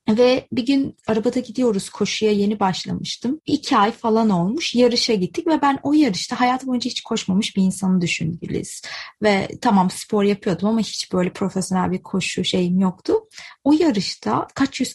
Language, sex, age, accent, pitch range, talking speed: Turkish, female, 30-49, native, 190-250 Hz, 165 wpm